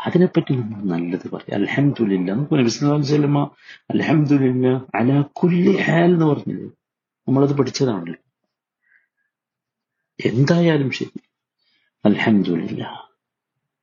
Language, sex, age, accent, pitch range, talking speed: Malayalam, male, 50-69, native, 105-145 Hz, 55 wpm